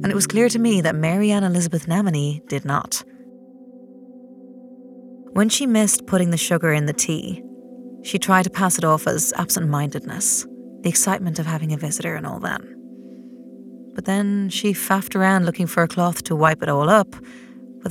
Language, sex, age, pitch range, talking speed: English, female, 30-49, 155-220 Hz, 180 wpm